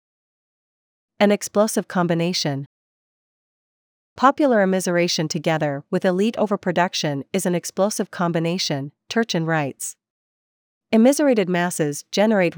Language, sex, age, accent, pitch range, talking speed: English, female, 40-59, American, 160-200 Hz, 85 wpm